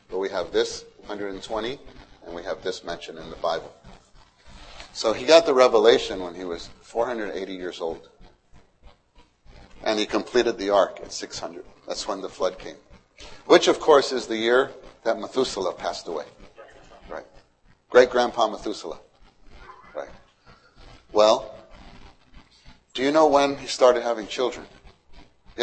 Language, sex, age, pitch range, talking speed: English, male, 40-59, 110-165 Hz, 140 wpm